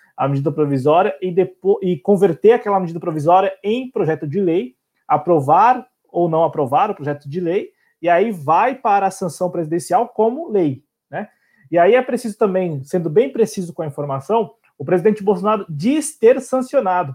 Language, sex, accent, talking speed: Portuguese, male, Brazilian, 170 wpm